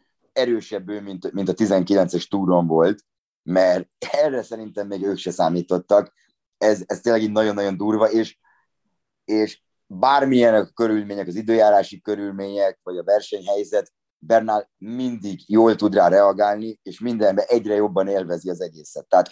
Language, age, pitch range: Hungarian, 30-49, 95-120 Hz